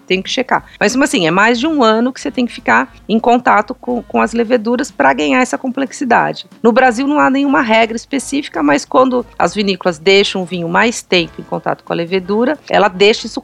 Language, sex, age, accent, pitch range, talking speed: Portuguese, female, 40-59, Brazilian, 190-255 Hz, 220 wpm